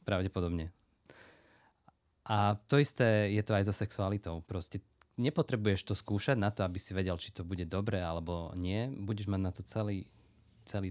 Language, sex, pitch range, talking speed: Slovak, male, 90-110 Hz, 165 wpm